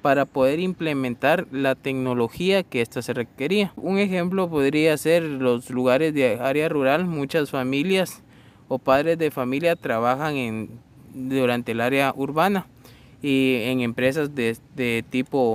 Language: Spanish